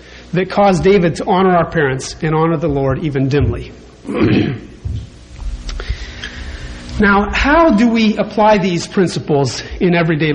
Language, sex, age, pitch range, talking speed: English, male, 30-49, 145-230 Hz, 130 wpm